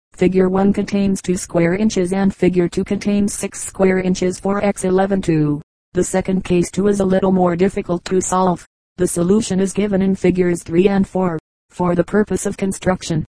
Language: English